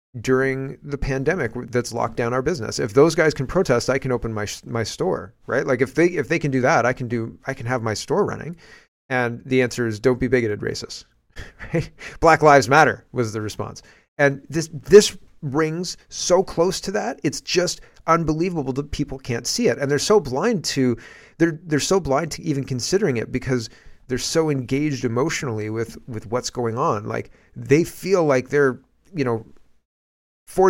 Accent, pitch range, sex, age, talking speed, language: American, 115-150 Hz, male, 30-49, 190 wpm, English